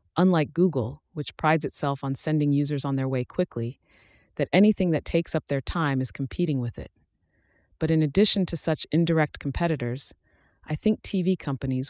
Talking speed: 170 wpm